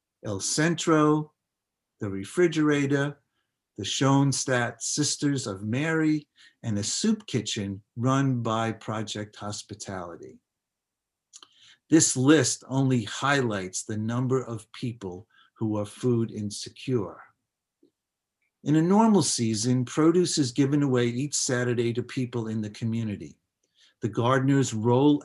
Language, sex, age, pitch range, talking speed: English, male, 50-69, 110-135 Hz, 110 wpm